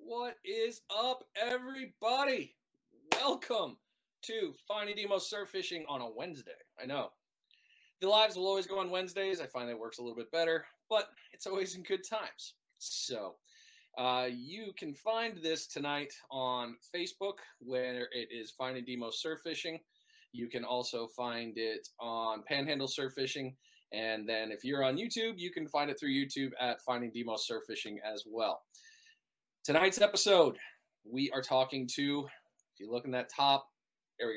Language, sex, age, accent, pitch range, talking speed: English, male, 20-39, American, 125-195 Hz, 160 wpm